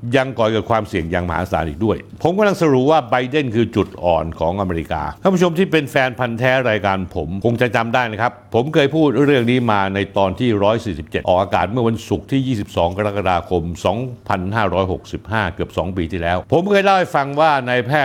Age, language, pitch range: 60-79, Thai, 95-130 Hz